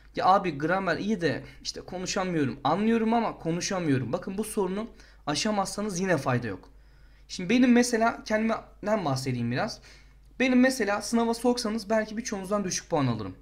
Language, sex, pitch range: Turkish, male, 140-215 Hz